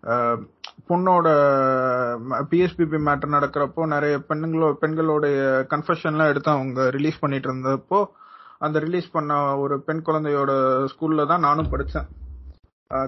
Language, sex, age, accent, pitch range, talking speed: Tamil, male, 30-49, native, 145-185 Hz, 105 wpm